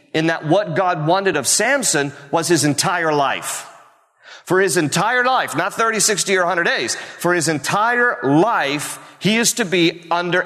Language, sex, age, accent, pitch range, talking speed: English, male, 40-59, American, 140-190 Hz, 170 wpm